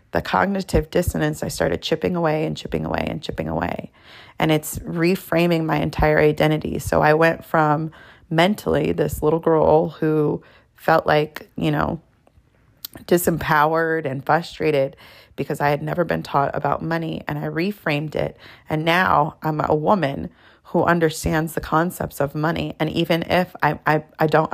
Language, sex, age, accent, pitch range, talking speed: English, female, 30-49, American, 150-165 Hz, 160 wpm